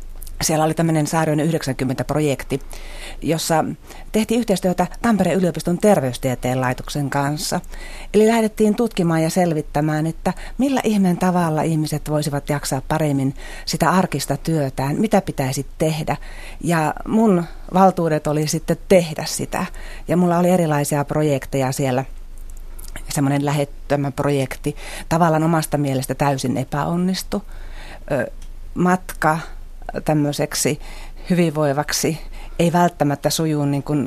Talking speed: 105 wpm